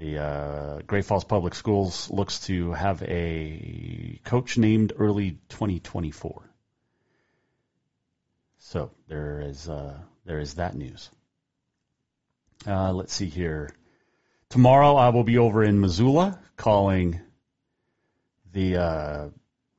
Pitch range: 90-120 Hz